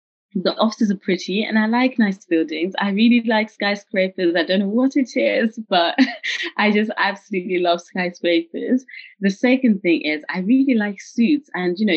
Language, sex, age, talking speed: English, female, 20-39, 180 wpm